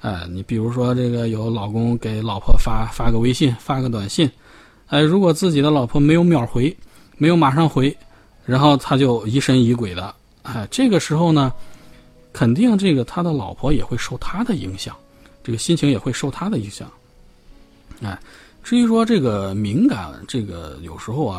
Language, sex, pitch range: Chinese, male, 105-145 Hz